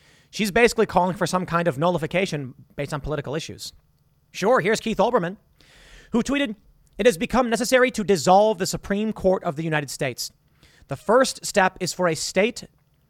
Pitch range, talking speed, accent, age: 140-185 Hz, 175 wpm, American, 30-49